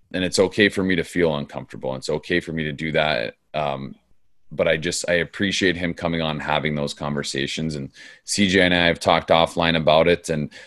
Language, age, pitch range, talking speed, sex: English, 30-49, 80-90 Hz, 215 wpm, male